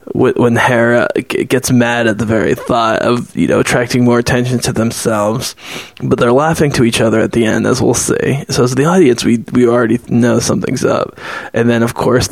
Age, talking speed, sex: 20-39, 205 wpm, male